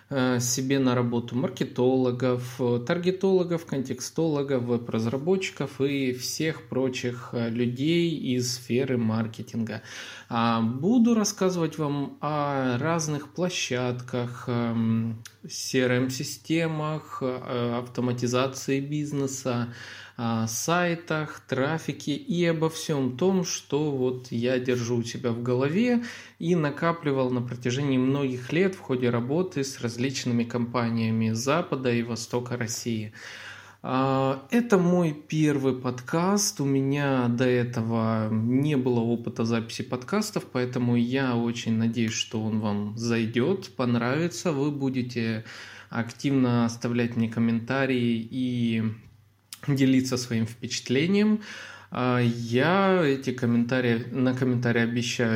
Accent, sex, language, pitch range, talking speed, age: native, male, Russian, 120-140 Hz, 100 wpm, 20-39